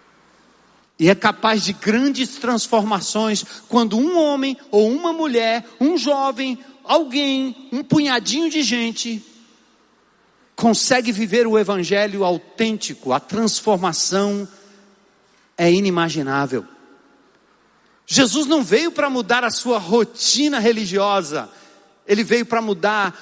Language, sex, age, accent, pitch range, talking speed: Portuguese, male, 50-69, Brazilian, 170-235 Hz, 105 wpm